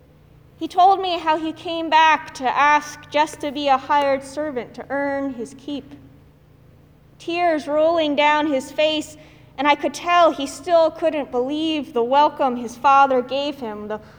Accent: American